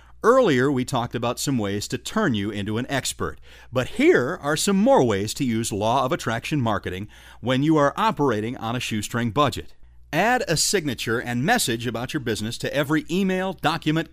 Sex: male